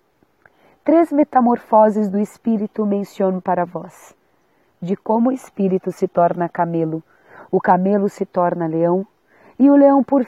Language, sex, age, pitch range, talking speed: Portuguese, female, 40-59, 180-225 Hz, 135 wpm